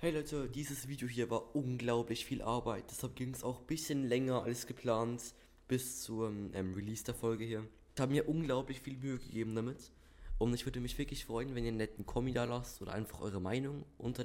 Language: German